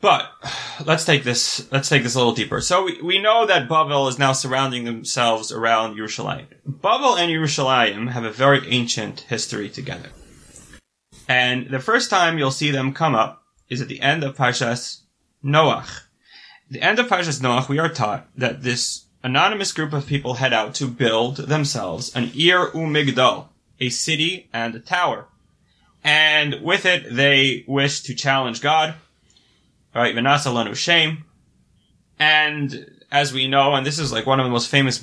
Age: 20-39